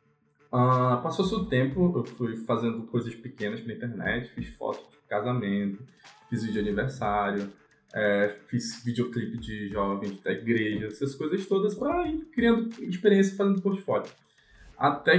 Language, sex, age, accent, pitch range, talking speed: Portuguese, male, 20-39, Brazilian, 115-165 Hz, 135 wpm